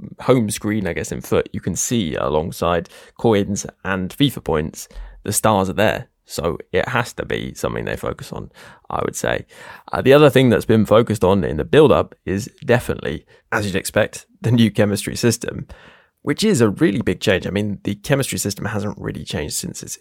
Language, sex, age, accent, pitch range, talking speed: English, male, 10-29, British, 100-115 Hz, 200 wpm